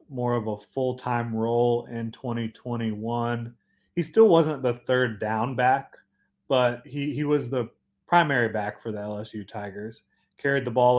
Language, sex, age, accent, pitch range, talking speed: English, male, 30-49, American, 110-135 Hz, 155 wpm